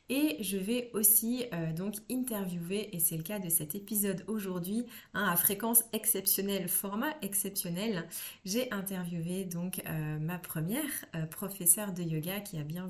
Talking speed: 155 wpm